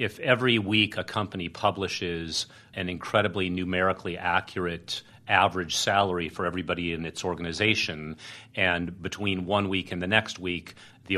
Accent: American